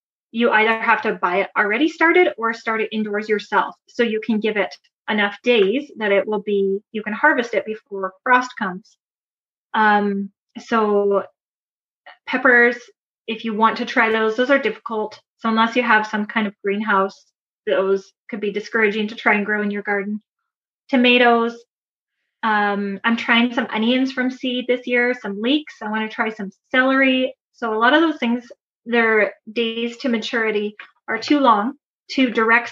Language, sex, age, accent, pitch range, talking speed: English, female, 20-39, American, 210-250 Hz, 170 wpm